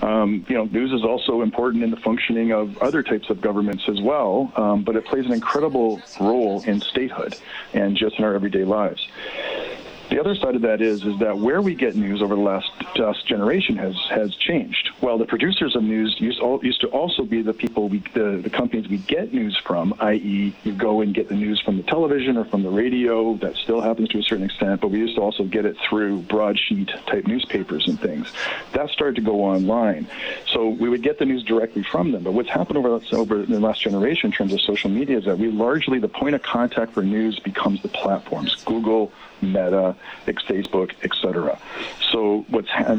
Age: 50-69